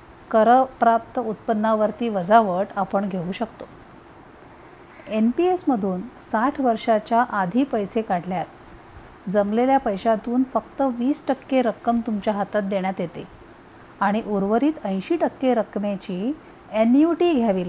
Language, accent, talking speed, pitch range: Marathi, native, 100 wpm, 200-255 Hz